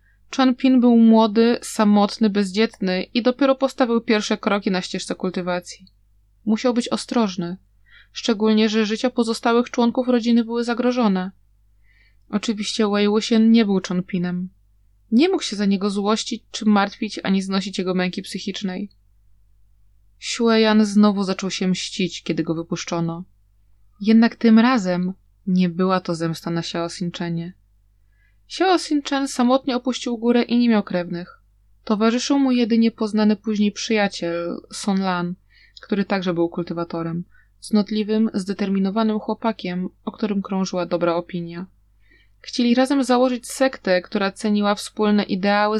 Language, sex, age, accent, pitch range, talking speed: Polish, female, 20-39, native, 180-225 Hz, 130 wpm